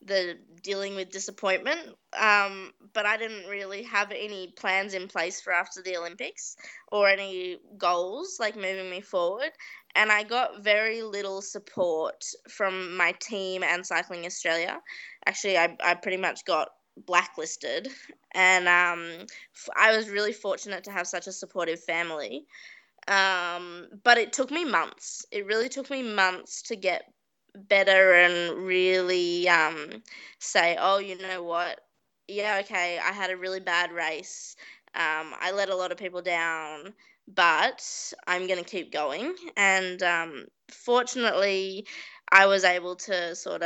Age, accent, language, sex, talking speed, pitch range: 20-39, Australian, English, female, 150 wpm, 175-210 Hz